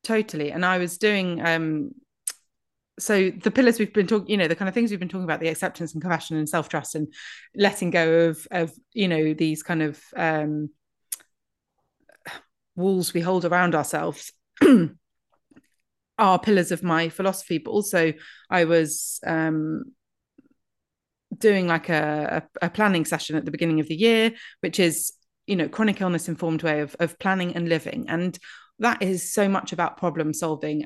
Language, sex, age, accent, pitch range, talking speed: English, female, 30-49, British, 160-200 Hz, 170 wpm